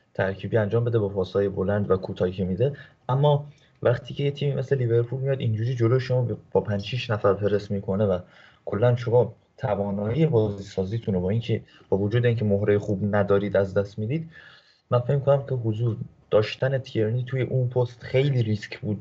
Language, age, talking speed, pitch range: Persian, 30-49, 180 wpm, 100-130 Hz